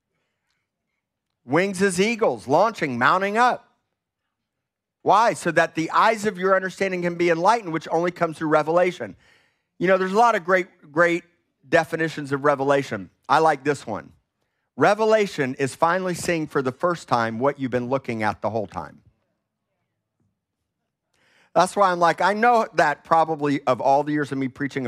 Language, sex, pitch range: English, male, 125-165 Hz